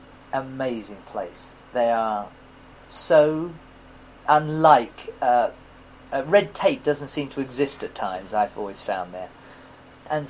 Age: 40-59